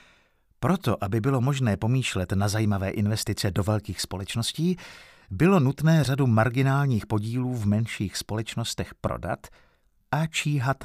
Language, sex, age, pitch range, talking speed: Czech, male, 50-69, 105-145 Hz, 120 wpm